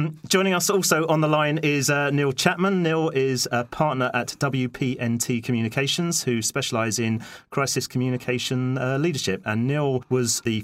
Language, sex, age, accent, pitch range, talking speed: English, male, 30-49, British, 110-140 Hz, 165 wpm